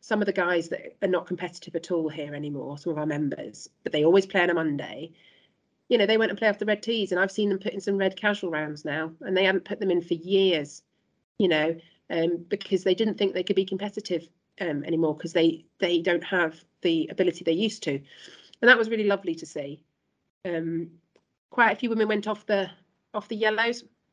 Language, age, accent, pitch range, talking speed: English, 40-59, British, 165-205 Hz, 235 wpm